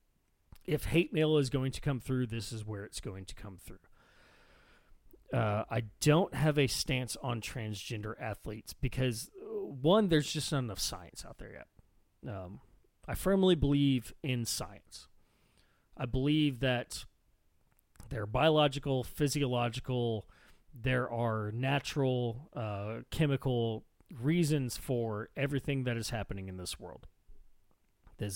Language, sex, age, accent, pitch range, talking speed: English, male, 30-49, American, 105-140 Hz, 135 wpm